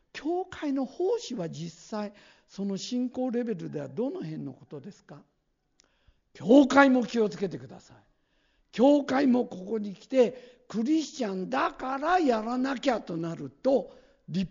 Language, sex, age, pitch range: Japanese, male, 60-79, 155-225 Hz